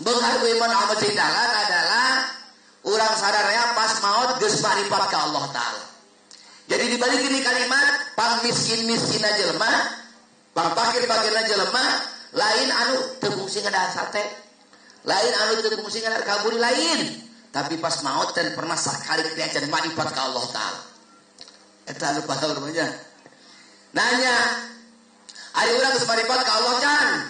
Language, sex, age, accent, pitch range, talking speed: Indonesian, male, 40-59, native, 165-240 Hz, 125 wpm